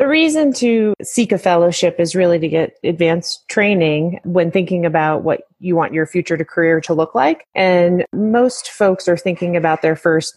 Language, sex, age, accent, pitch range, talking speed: English, female, 30-49, American, 155-180 Hz, 190 wpm